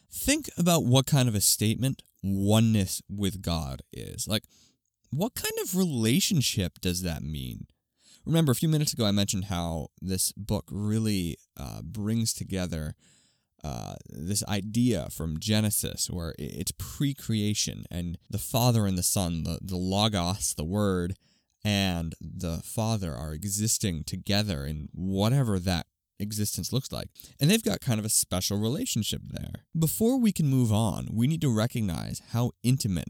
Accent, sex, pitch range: American, male, 90-120 Hz